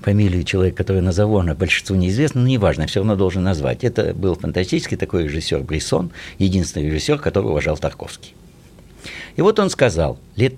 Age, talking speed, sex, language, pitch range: 60-79, 170 wpm, male, Russian, 90-145 Hz